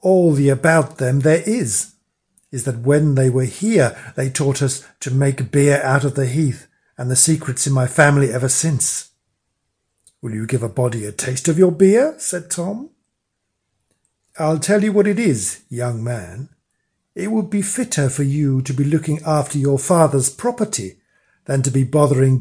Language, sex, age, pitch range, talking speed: English, male, 50-69, 130-160 Hz, 180 wpm